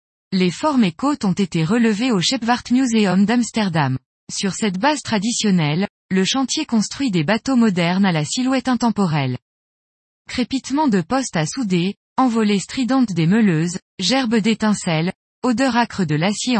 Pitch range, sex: 180-245 Hz, female